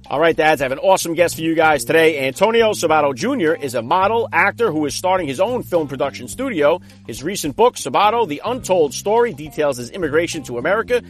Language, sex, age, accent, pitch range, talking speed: English, male, 40-59, American, 140-190 Hz, 210 wpm